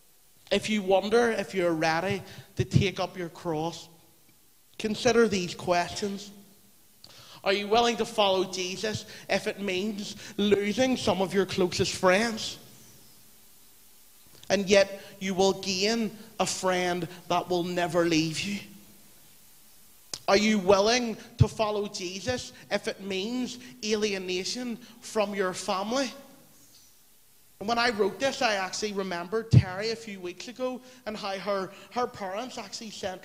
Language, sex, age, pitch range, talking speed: English, male, 30-49, 190-235 Hz, 135 wpm